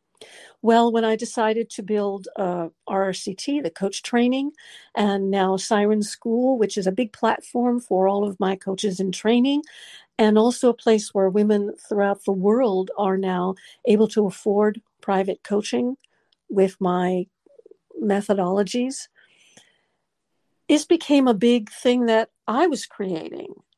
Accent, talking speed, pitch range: American, 140 wpm, 195-235 Hz